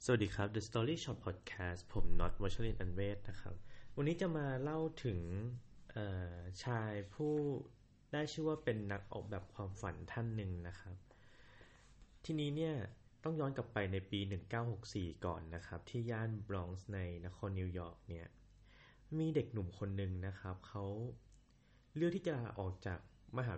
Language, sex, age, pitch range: Thai, male, 20-39, 95-120 Hz